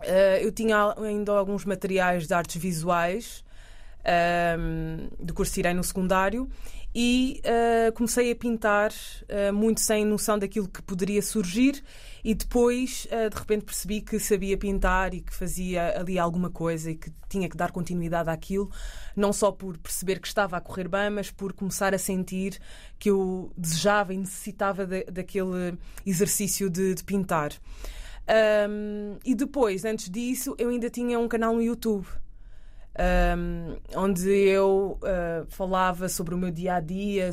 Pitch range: 180-215 Hz